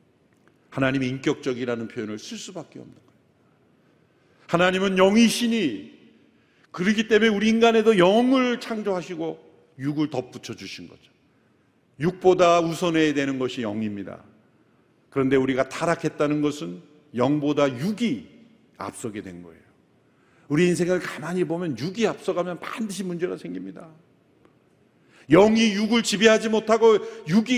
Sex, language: male, Korean